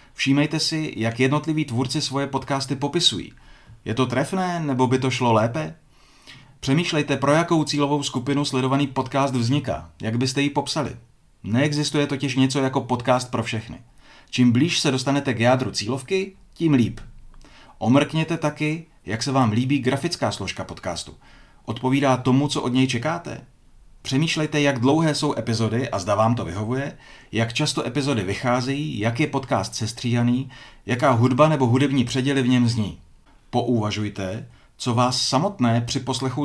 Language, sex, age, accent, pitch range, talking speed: Czech, male, 40-59, native, 115-145 Hz, 150 wpm